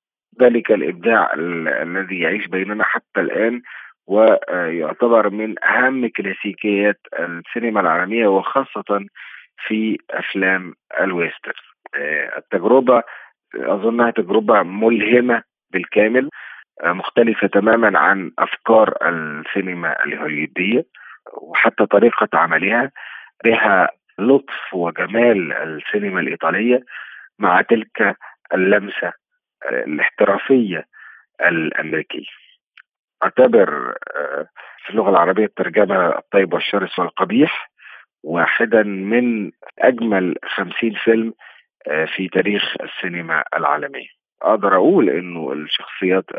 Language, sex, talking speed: Arabic, male, 80 wpm